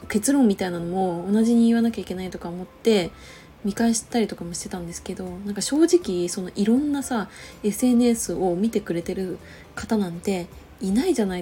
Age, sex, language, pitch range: 20-39, female, Japanese, 185-240 Hz